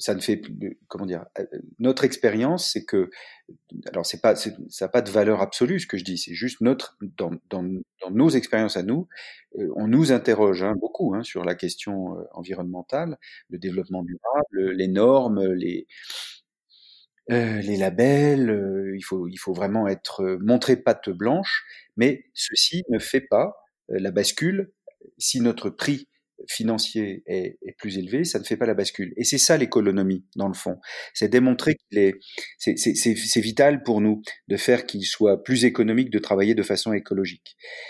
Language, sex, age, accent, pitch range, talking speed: French, male, 40-59, French, 95-130 Hz, 175 wpm